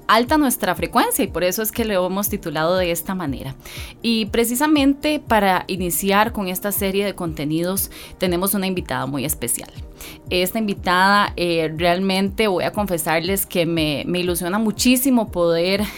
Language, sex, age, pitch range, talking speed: English, female, 20-39, 170-205 Hz, 155 wpm